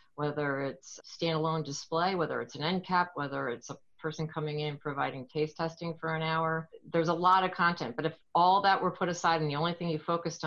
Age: 40-59